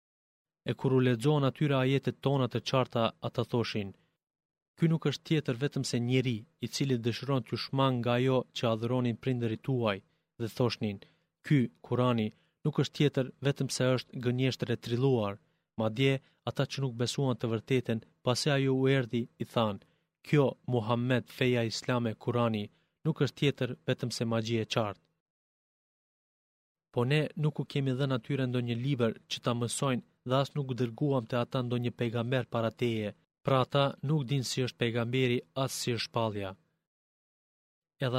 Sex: male